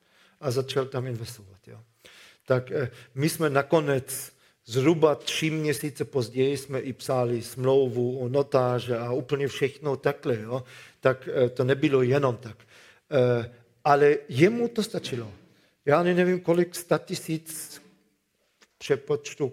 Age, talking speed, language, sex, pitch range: 50-69, 120 wpm, Czech, male, 130-155 Hz